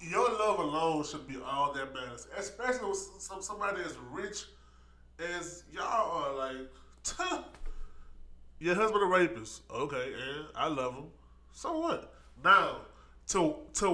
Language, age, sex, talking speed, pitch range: English, 20-39, male, 140 wpm, 115-170 Hz